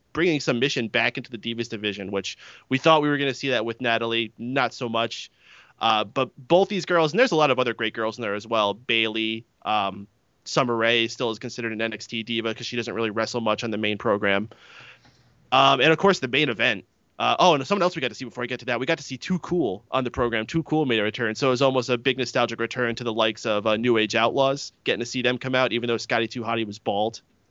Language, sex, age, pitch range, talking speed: English, male, 30-49, 110-130 Hz, 270 wpm